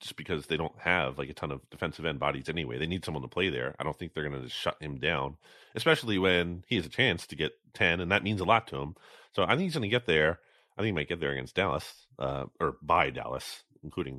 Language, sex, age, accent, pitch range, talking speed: English, male, 30-49, American, 85-120 Hz, 275 wpm